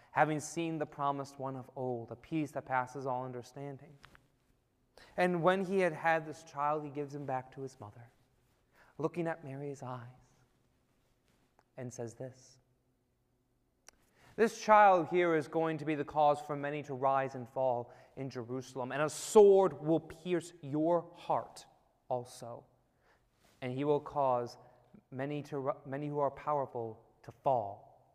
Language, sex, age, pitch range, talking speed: English, male, 30-49, 125-175 Hz, 150 wpm